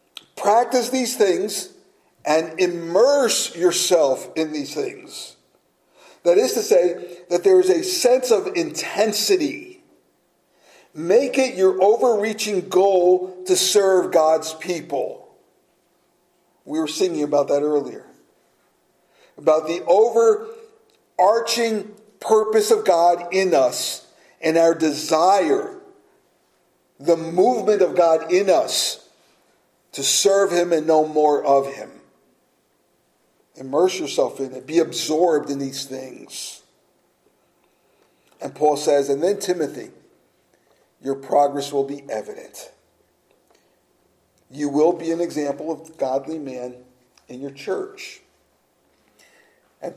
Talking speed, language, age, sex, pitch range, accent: 110 wpm, English, 50-69, male, 145-235 Hz, American